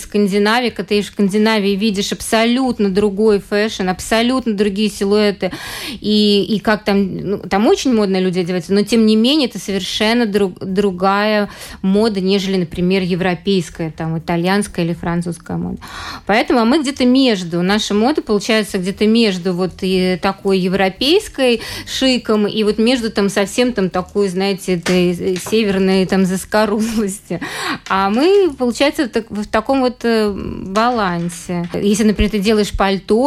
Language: Russian